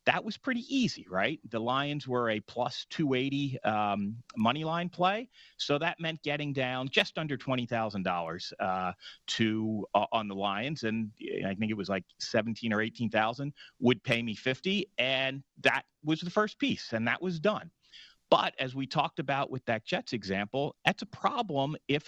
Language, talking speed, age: English, 185 wpm, 40-59